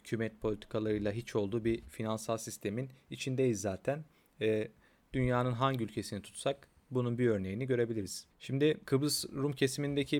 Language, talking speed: Turkish, 130 wpm